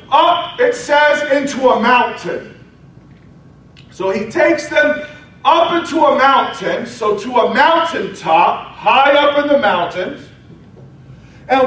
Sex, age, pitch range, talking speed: male, 40-59, 200-290 Hz, 125 wpm